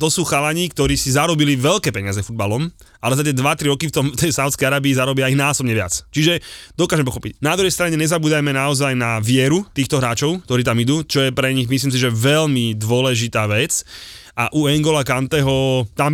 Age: 20-39